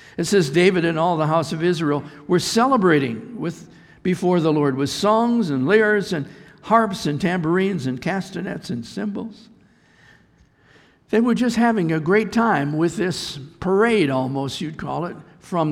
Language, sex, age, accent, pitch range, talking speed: English, male, 60-79, American, 150-200 Hz, 160 wpm